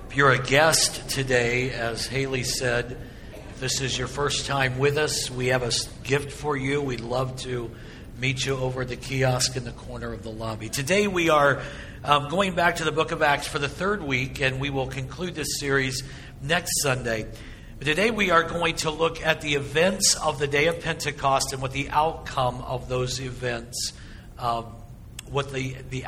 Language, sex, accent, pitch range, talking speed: English, male, American, 125-150 Hz, 195 wpm